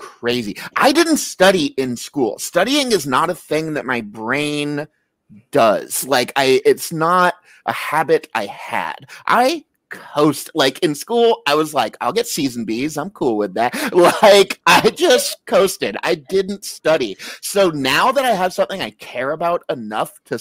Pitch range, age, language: 140-225 Hz, 30-49, English